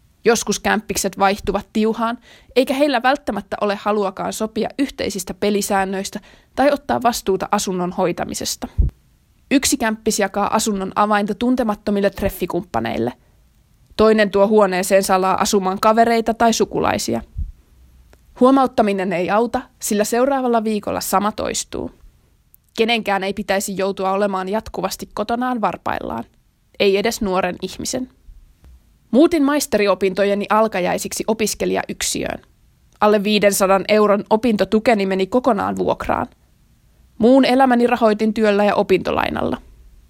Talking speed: 105 wpm